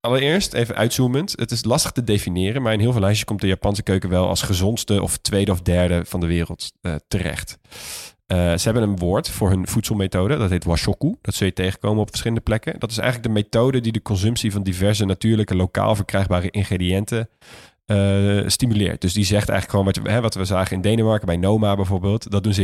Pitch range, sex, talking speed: 95-115 Hz, male, 210 wpm